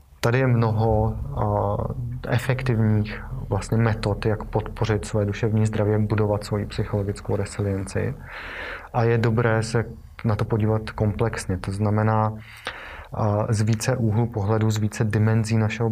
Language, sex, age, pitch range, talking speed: Czech, male, 20-39, 100-115 Hz, 125 wpm